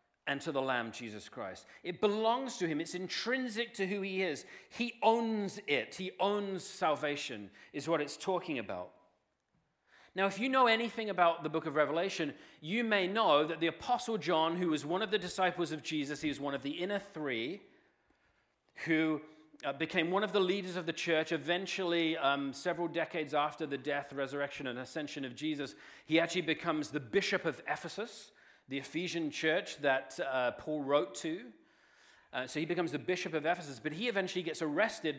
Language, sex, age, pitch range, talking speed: English, male, 40-59, 140-190 Hz, 185 wpm